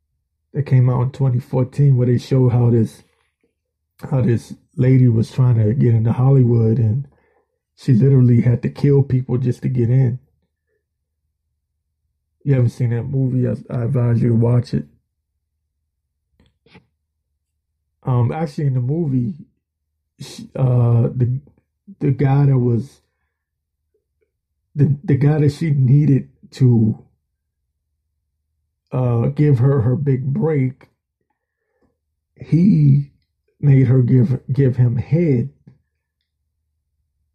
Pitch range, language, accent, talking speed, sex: 80-135 Hz, English, American, 115 wpm, male